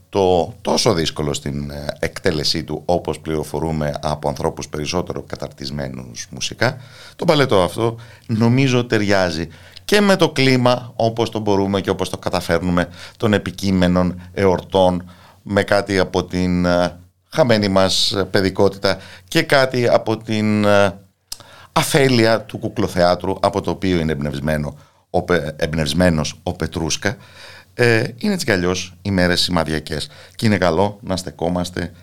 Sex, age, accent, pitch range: male, 50-69, native, 85-115 Hz